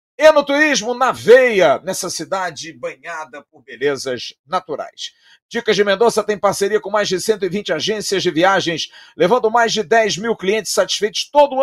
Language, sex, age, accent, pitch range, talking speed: Portuguese, male, 50-69, Brazilian, 180-235 Hz, 160 wpm